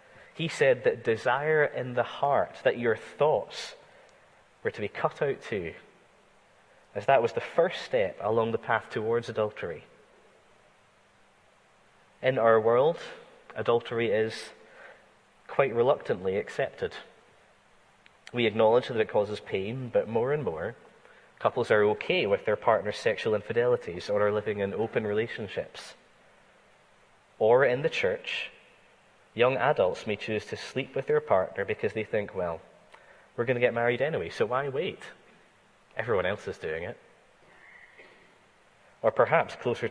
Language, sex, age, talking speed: English, male, 10-29, 140 wpm